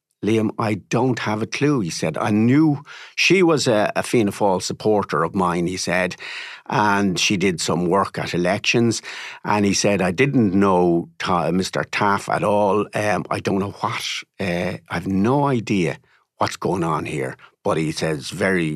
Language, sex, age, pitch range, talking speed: English, male, 50-69, 95-135 Hz, 180 wpm